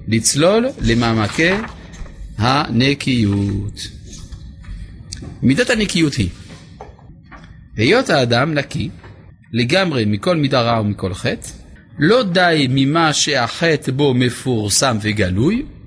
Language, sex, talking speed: Hebrew, male, 85 wpm